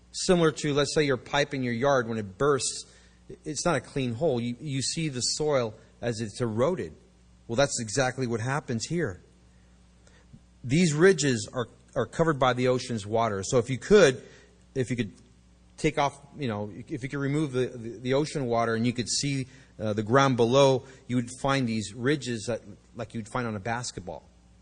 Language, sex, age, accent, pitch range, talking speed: English, male, 30-49, American, 105-140 Hz, 195 wpm